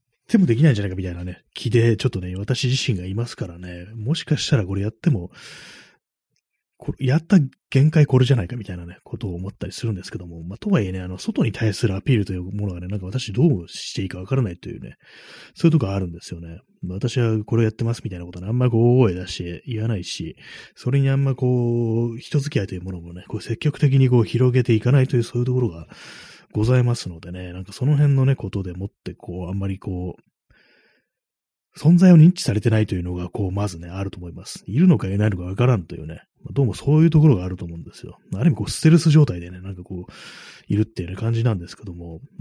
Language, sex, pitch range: Japanese, male, 90-130 Hz